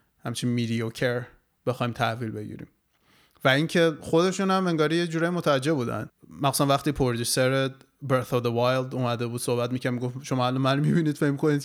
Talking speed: 165 wpm